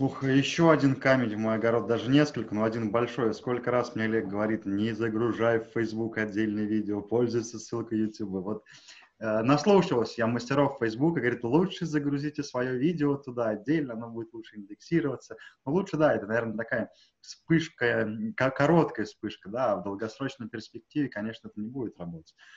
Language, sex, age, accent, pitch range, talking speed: Russian, male, 20-39, native, 115-155 Hz, 165 wpm